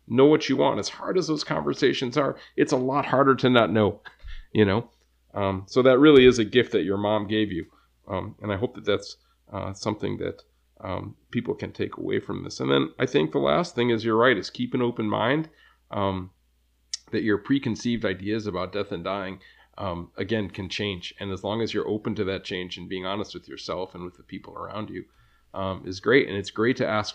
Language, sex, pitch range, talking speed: English, male, 95-115 Hz, 230 wpm